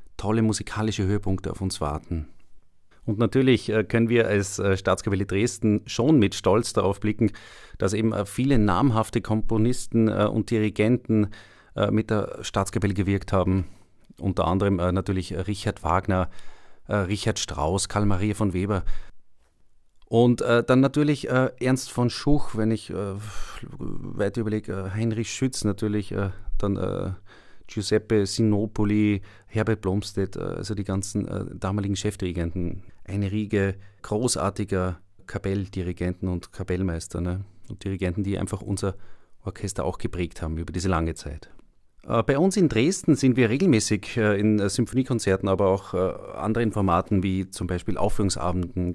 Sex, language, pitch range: male, German, 95-110 Hz